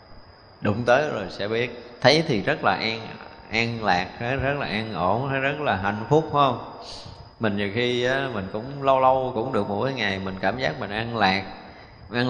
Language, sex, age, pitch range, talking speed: Vietnamese, male, 20-39, 100-135 Hz, 195 wpm